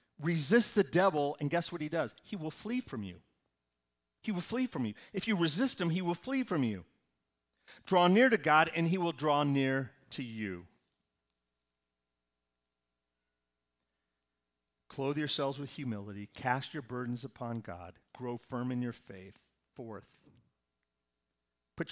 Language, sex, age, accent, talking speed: English, male, 50-69, American, 150 wpm